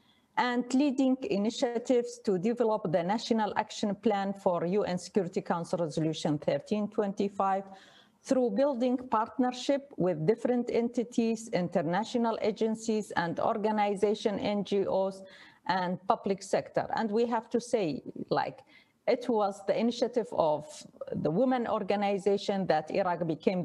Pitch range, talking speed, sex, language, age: 180-235 Hz, 115 wpm, female, English, 40-59